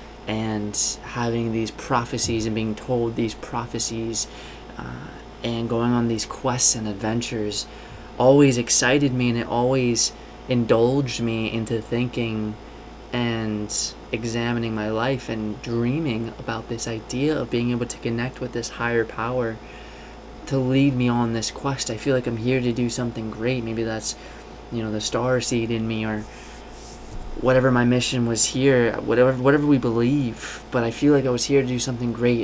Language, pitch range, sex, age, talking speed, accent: English, 115-125 Hz, male, 20-39, 165 wpm, American